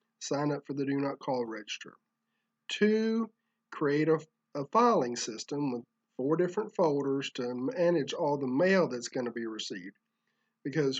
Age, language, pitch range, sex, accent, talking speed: 40-59, English, 130-170 Hz, male, American, 160 wpm